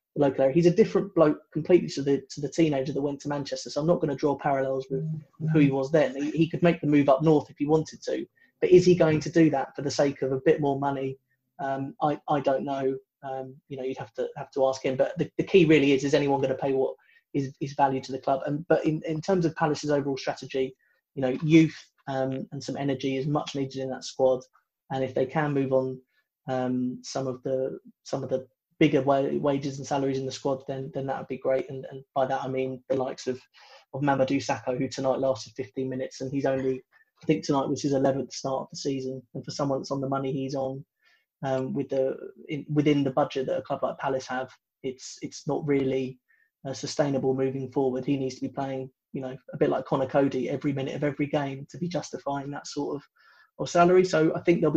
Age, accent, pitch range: 30-49, British, 130-150 Hz